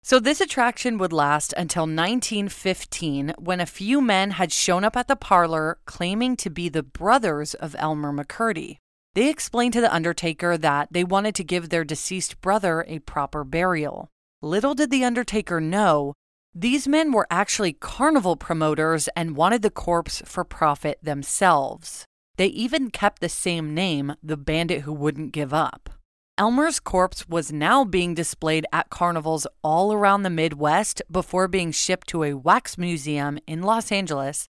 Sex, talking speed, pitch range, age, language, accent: female, 160 wpm, 155-215 Hz, 30-49, English, American